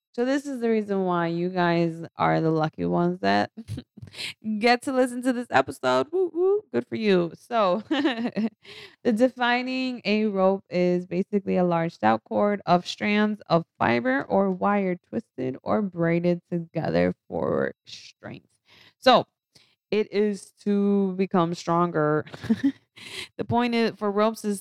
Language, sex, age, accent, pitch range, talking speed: English, female, 20-39, American, 170-210 Hz, 135 wpm